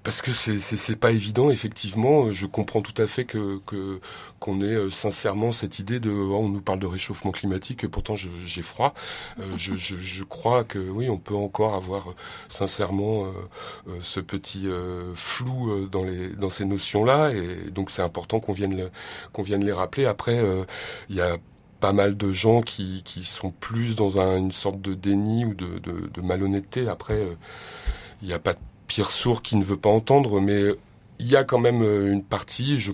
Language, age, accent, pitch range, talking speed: French, 30-49, French, 95-110 Hz, 200 wpm